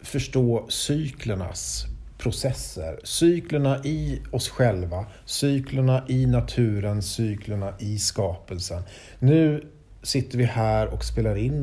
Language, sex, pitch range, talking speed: English, male, 105-135 Hz, 105 wpm